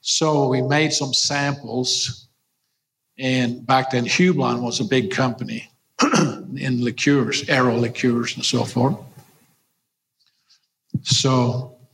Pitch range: 120-135 Hz